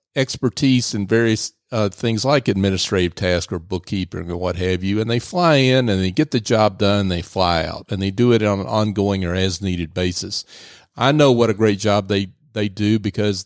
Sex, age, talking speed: male, 40-59, 220 wpm